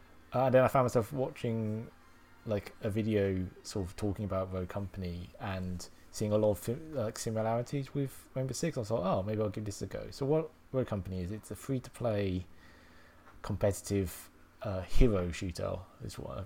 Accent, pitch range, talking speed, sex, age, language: British, 90-110 Hz, 180 wpm, male, 20-39, English